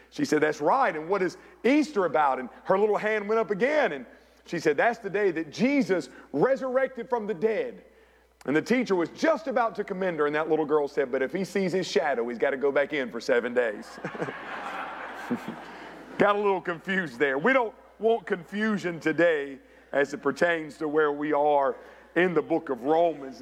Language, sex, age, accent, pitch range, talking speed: English, male, 50-69, American, 155-215 Hz, 200 wpm